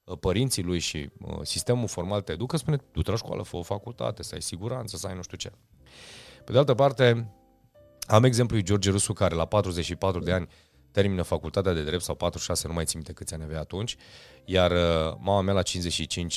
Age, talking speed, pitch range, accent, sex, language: 30-49, 200 wpm, 85-120 Hz, native, male, Romanian